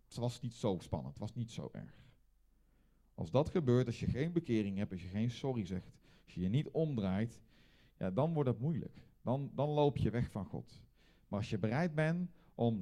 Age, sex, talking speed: 40-59, male, 215 wpm